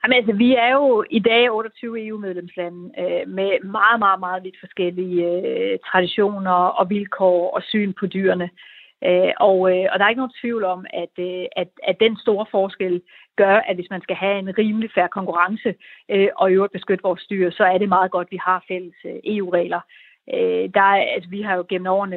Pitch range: 180-215 Hz